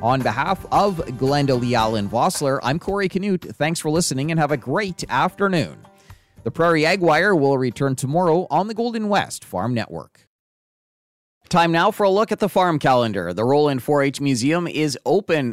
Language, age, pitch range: English, 30-49, 125-175 Hz